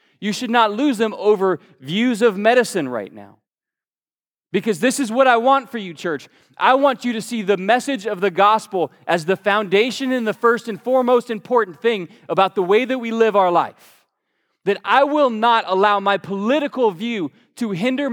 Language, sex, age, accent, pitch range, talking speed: English, male, 20-39, American, 200-250 Hz, 190 wpm